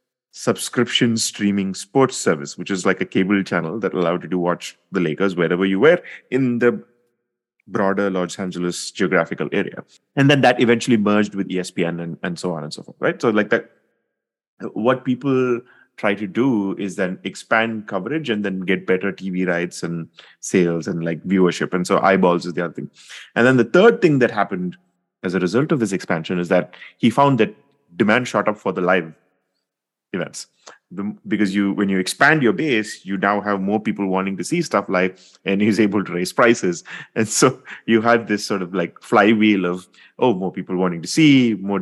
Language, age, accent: English, 30-49, Indian